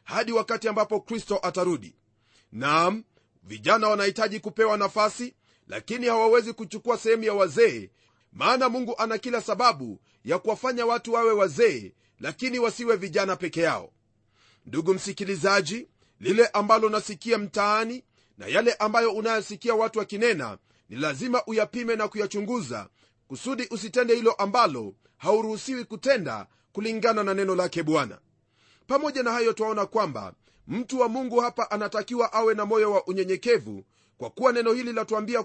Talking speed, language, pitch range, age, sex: 135 wpm, Swahili, 190-235 Hz, 30-49, male